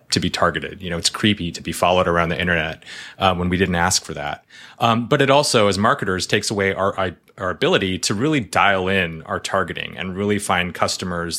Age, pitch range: 30-49, 85-110 Hz